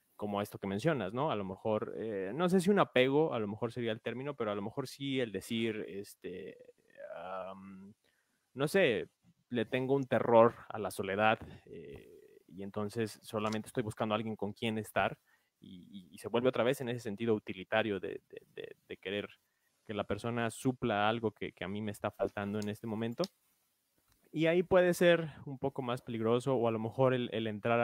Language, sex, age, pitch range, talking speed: Spanish, male, 20-39, 105-140 Hz, 205 wpm